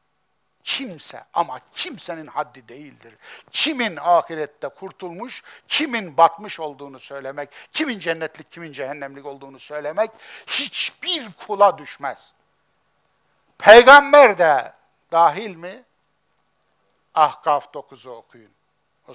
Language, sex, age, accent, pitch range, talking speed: Turkish, male, 60-79, native, 155-220 Hz, 90 wpm